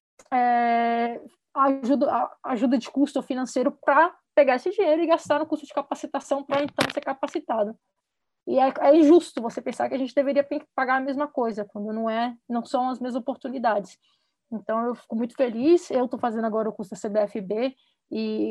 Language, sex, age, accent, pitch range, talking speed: Portuguese, female, 20-39, Brazilian, 230-280 Hz, 180 wpm